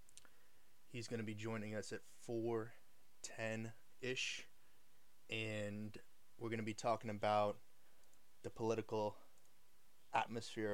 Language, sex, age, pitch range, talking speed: English, male, 20-39, 110-130 Hz, 105 wpm